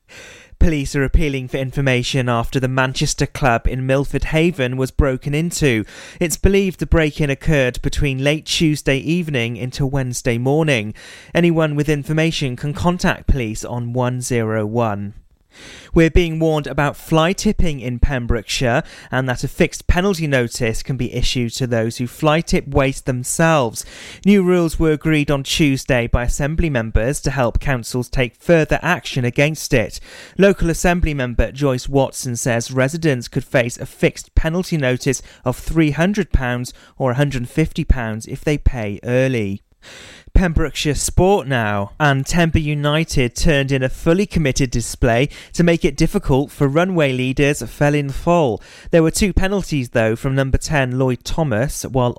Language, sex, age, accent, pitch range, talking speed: English, male, 30-49, British, 125-160 Hz, 145 wpm